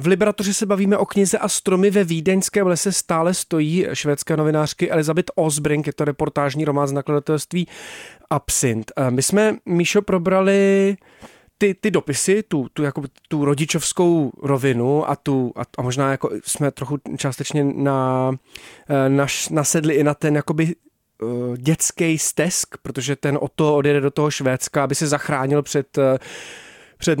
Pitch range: 140-165 Hz